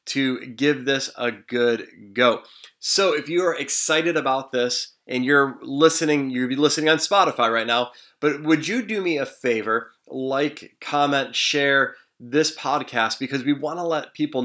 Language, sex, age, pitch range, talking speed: English, male, 20-39, 120-145 Hz, 170 wpm